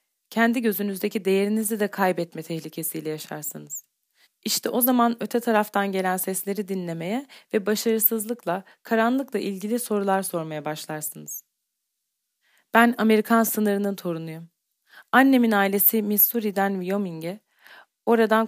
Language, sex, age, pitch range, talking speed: Turkish, female, 30-49, 180-225 Hz, 100 wpm